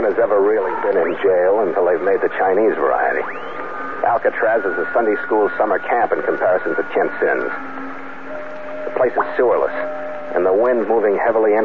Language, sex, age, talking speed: English, male, 50-69, 170 wpm